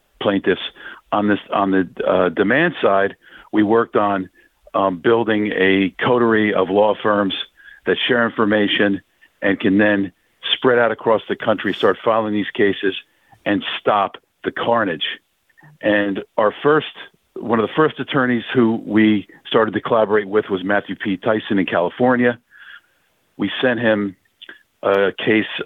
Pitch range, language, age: 95-115 Hz, English, 50-69